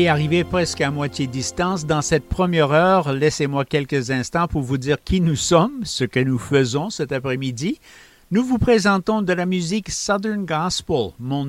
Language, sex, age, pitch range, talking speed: English, male, 50-69, 130-185 Hz, 180 wpm